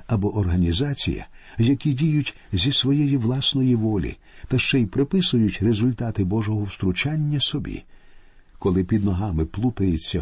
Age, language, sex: 50-69, Ukrainian, male